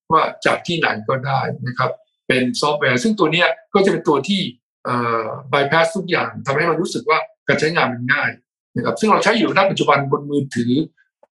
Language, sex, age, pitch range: Thai, male, 60-79, 130-180 Hz